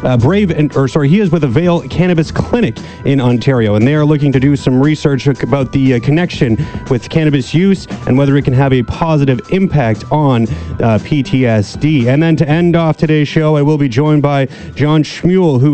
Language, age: English, 30-49